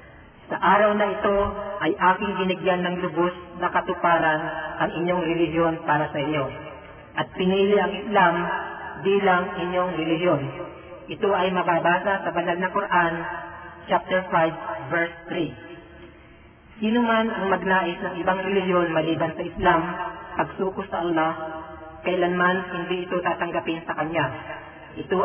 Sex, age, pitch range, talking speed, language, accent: male, 40-59, 165-190 Hz, 130 wpm, Filipino, native